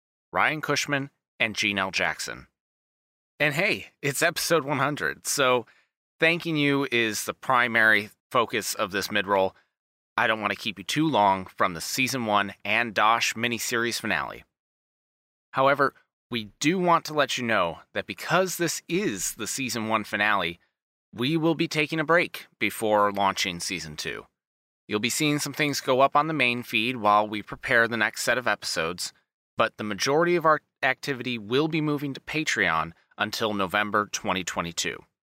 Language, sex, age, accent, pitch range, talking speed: English, male, 30-49, American, 105-150 Hz, 165 wpm